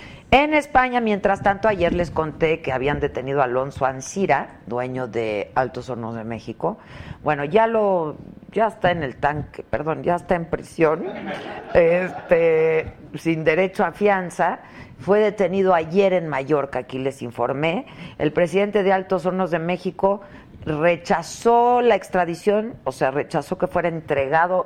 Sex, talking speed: female, 150 wpm